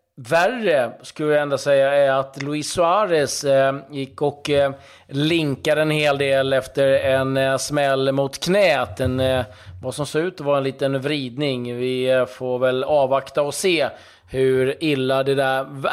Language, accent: Swedish, native